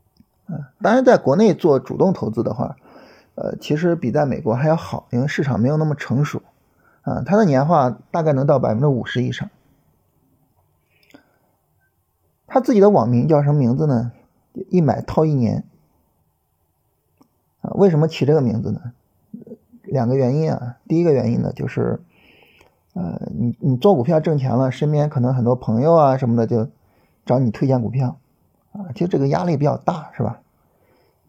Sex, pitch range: male, 120-160 Hz